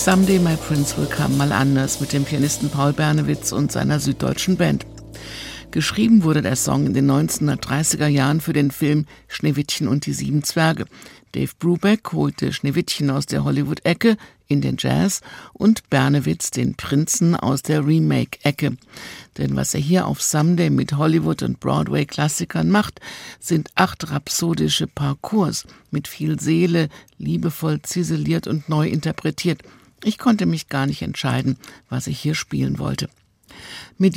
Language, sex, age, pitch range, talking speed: German, female, 60-79, 135-165 Hz, 150 wpm